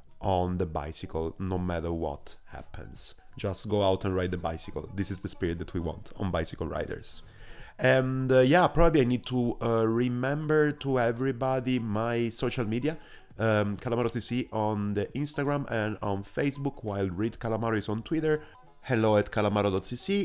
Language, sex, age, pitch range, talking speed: English, male, 30-49, 90-125 Hz, 165 wpm